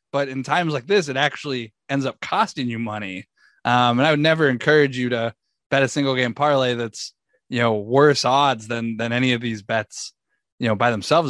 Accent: American